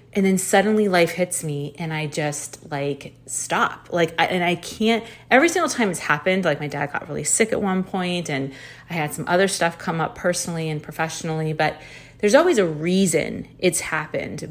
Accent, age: American, 30-49